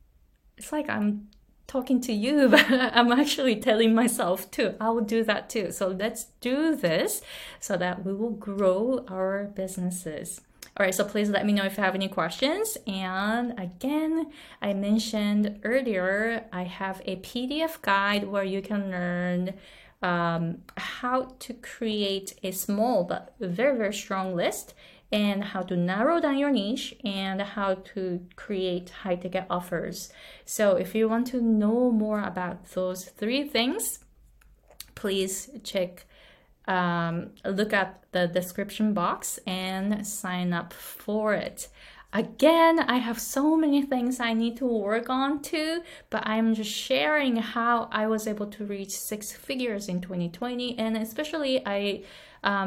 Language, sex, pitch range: Japanese, female, 190-240 Hz